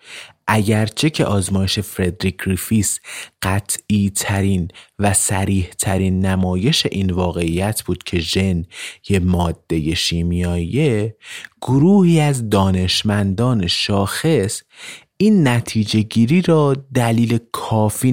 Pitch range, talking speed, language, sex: 95-125 Hz, 95 wpm, Persian, male